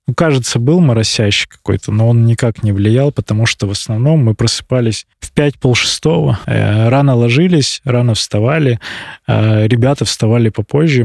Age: 20-39